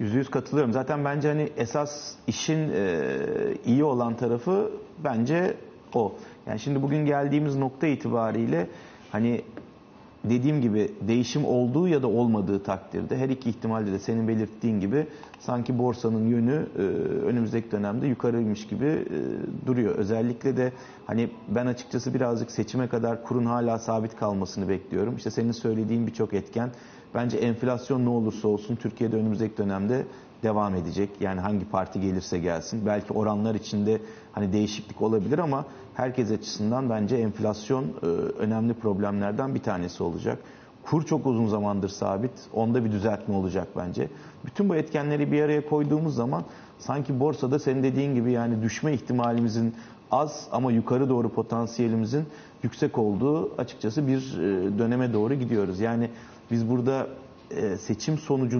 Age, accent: 40-59, native